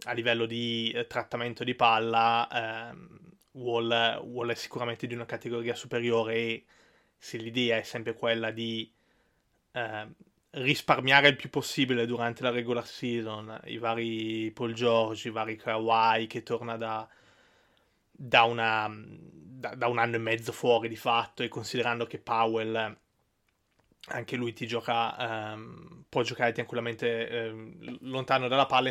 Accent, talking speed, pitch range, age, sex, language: native, 140 wpm, 115-130 Hz, 20-39, male, Italian